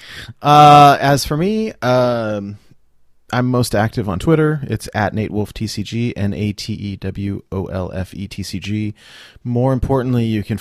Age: 30-49